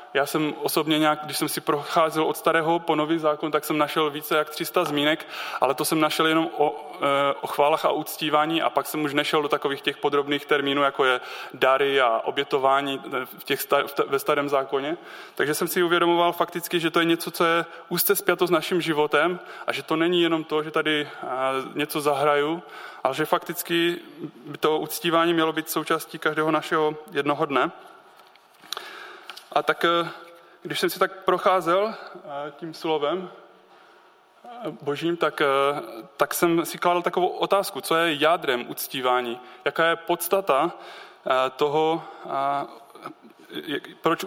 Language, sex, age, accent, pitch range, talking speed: Czech, male, 20-39, native, 145-170 Hz, 160 wpm